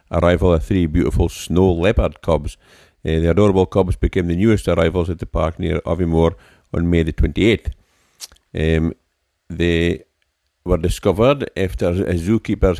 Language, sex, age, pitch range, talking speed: English, male, 50-69, 80-95 Hz, 140 wpm